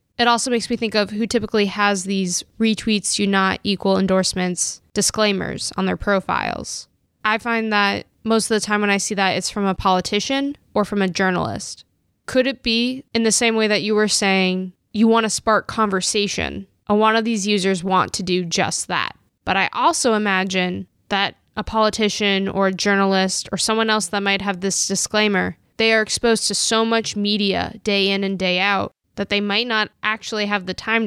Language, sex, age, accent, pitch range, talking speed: English, female, 10-29, American, 190-215 Hz, 195 wpm